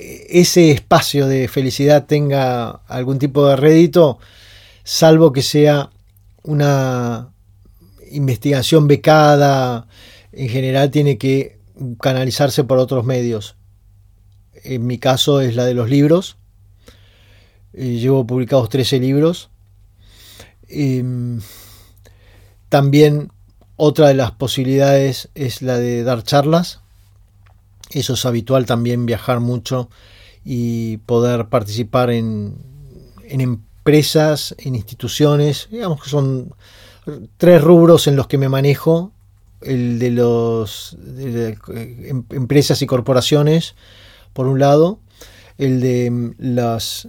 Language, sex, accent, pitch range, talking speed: Spanish, male, Argentinian, 105-140 Hz, 105 wpm